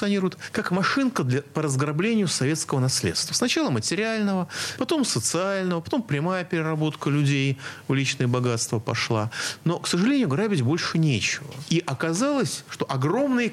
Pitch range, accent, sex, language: 115-170 Hz, native, male, Russian